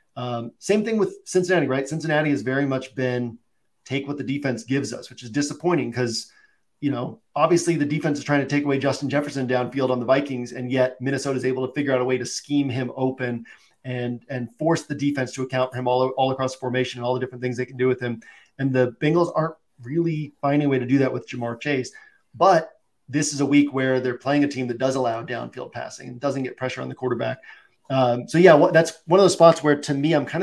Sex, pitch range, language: male, 125-145 Hz, English